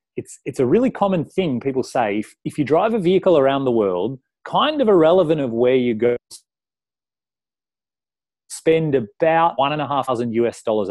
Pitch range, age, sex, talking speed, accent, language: 105-140 Hz, 30-49, male, 180 wpm, Australian, English